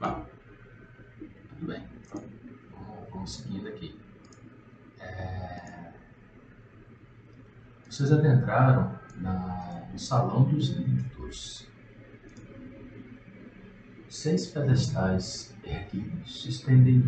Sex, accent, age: male, Brazilian, 50-69